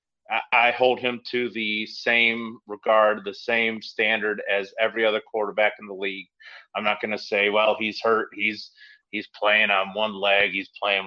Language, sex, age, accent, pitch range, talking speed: English, male, 30-49, American, 105-130 Hz, 180 wpm